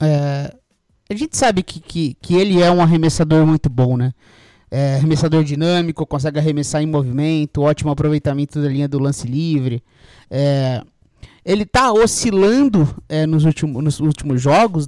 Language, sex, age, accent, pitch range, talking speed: English, male, 20-39, Brazilian, 140-180 Hz, 155 wpm